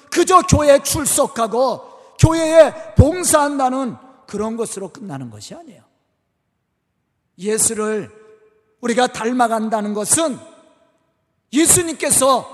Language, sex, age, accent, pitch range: Korean, male, 40-59, native, 215-320 Hz